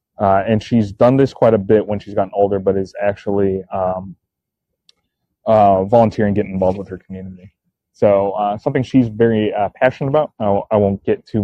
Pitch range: 95-105 Hz